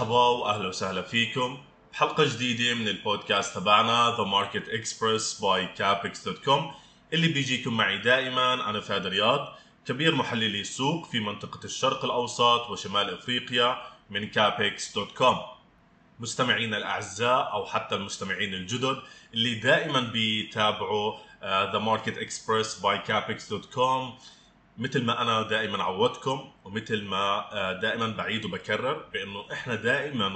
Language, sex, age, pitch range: Arabic, male, 20-39, 105-130 Hz